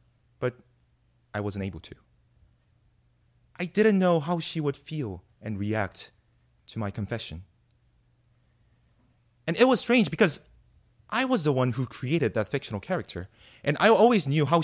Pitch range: 110-160 Hz